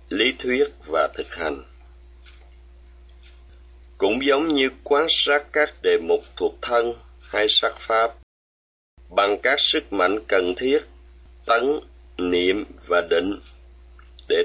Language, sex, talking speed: Vietnamese, male, 120 wpm